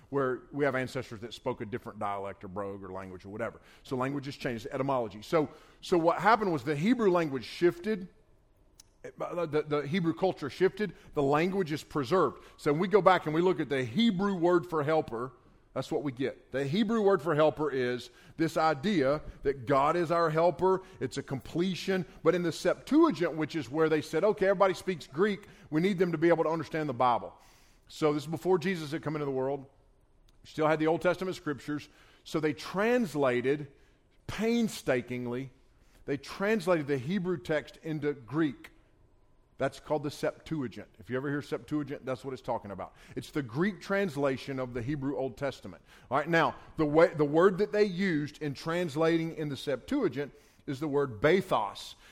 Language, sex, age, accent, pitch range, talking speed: English, male, 40-59, American, 135-175 Hz, 190 wpm